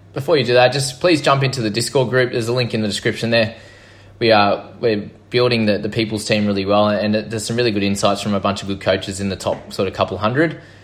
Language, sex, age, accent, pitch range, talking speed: English, male, 20-39, Australian, 100-115 Hz, 265 wpm